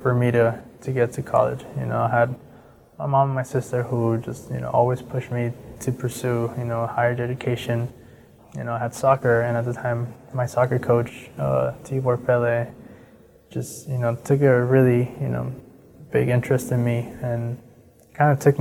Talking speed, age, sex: 195 wpm, 20-39, male